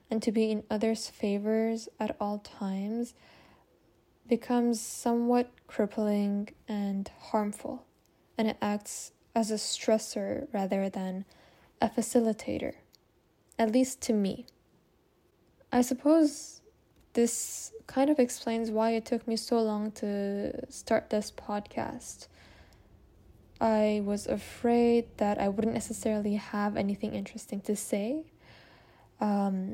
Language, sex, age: English, female, 10-29